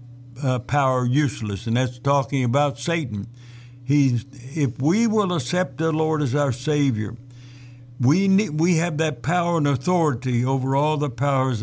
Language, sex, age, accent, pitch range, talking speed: English, male, 60-79, American, 120-150 Hz, 155 wpm